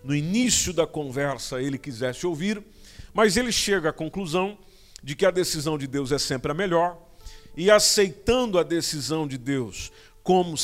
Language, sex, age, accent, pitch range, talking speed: Portuguese, male, 50-69, Brazilian, 130-185 Hz, 165 wpm